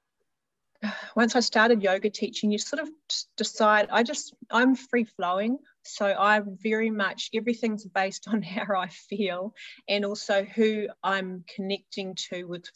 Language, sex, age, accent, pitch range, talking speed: English, female, 30-49, Australian, 185-215 Hz, 140 wpm